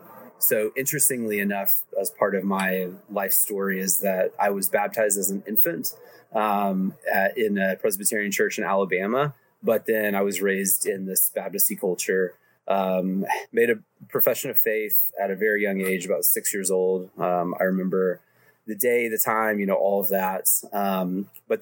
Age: 20-39